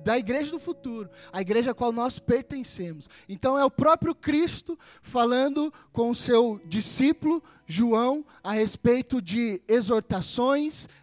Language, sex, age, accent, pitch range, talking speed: Portuguese, male, 10-29, Brazilian, 190-250 Hz, 135 wpm